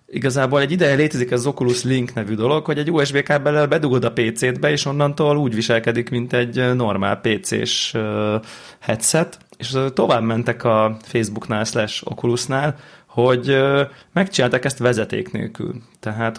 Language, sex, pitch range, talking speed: Hungarian, male, 115-140 Hz, 135 wpm